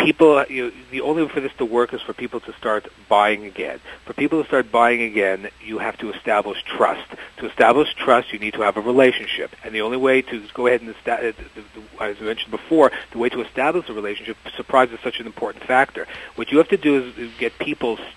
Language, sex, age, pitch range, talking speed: English, male, 40-59, 115-145 Hz, 230 wpm